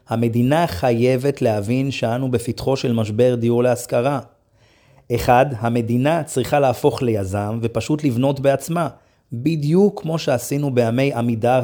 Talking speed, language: 115 wpm, Hebrew